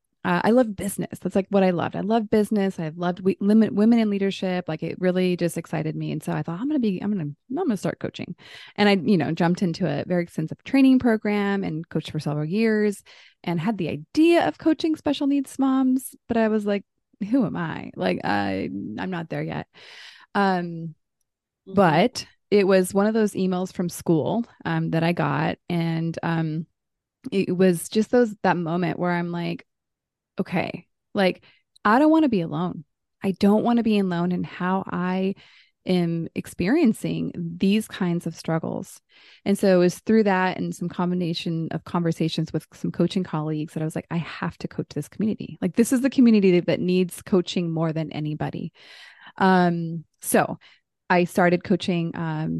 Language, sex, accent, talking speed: English, female, American, 195 wpm